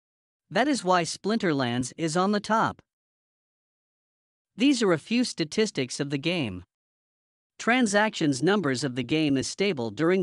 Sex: male